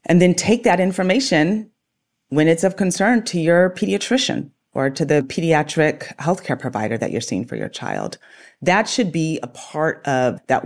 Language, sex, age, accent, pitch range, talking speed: English, female, 30-49, American, 130-160 Hz, 175 wpm